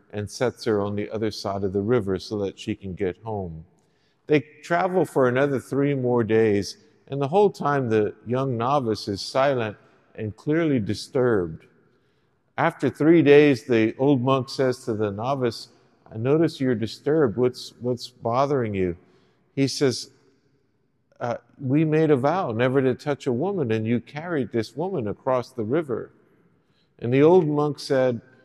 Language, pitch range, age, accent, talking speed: English, 115-150 Hz, 50-69, American, 165 wpm